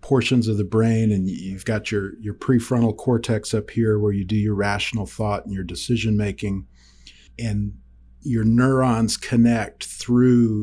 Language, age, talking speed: English, 40-59, 160 wpm